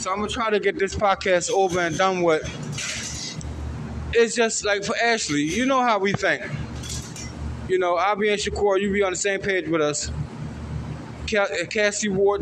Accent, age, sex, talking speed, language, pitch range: American, 20-39, male, 185 wpm, English, 155-220 Hz